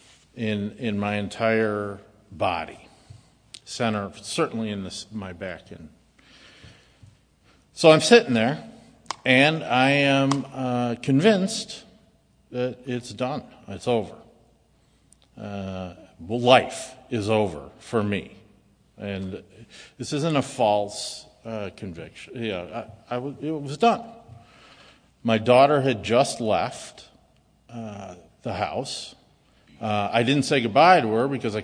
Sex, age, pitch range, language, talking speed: male, 50-69, 105-140 Hz, English, 120 wpm